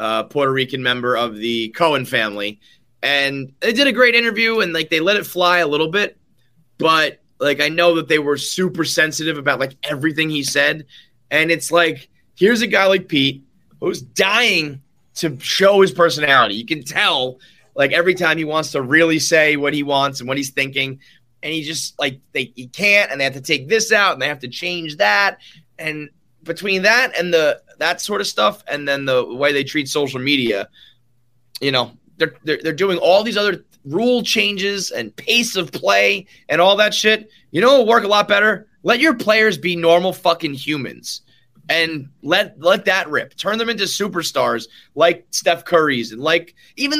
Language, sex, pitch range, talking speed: English, male, 140-180 Hz, 200 wpm